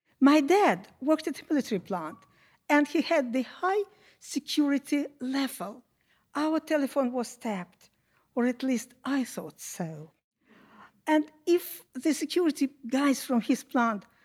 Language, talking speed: English, 135 wpm